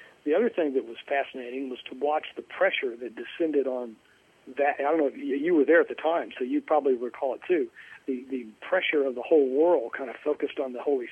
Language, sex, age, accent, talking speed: English, male, 50-69, American, 240 wpm